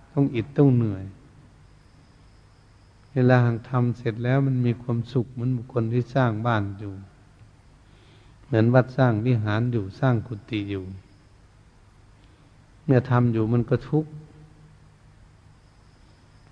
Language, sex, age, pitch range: Thai, male, 70-89, 105-125 Hz